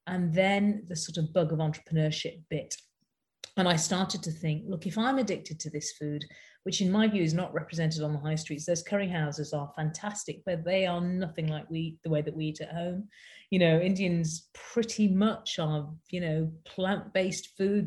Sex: female